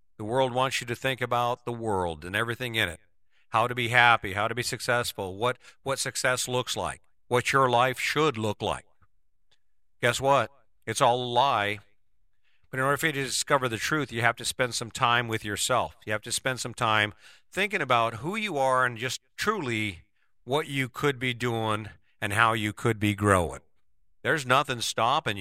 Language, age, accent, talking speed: English, 50-69, American, 195 wpm